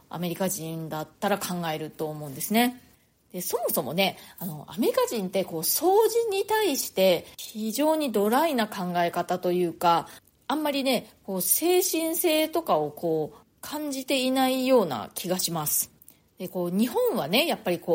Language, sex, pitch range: Japanese, female, 170-265 Hz